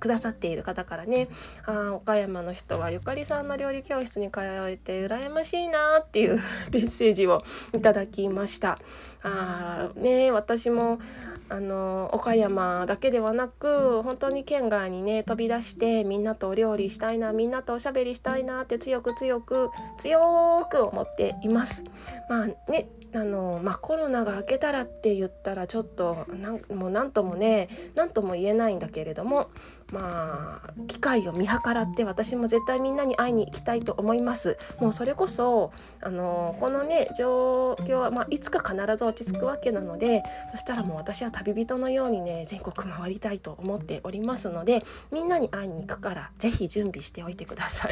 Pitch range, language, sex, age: 195-250 Hz, Japanese, female, 20-39